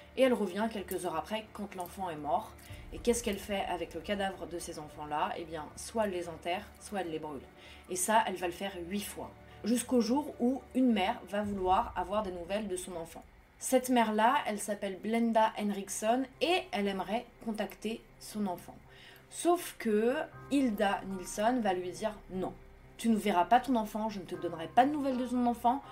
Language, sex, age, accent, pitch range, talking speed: French, female, 20-39, French, 185-235 Hz, 200 wpm